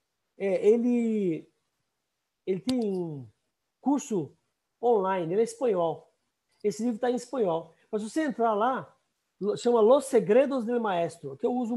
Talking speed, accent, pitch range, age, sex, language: 145 wpm, Brazilian, 180-240 Hz, 50-69, male, Portuguese